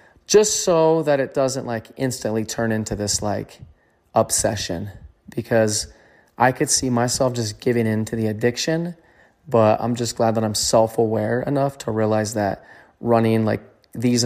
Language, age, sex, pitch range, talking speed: English, 20-39, male, 110-135 Hz, 155 wpm